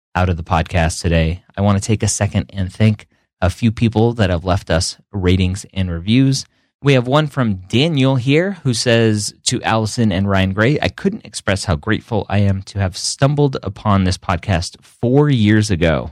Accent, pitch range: American, 85-115 Hz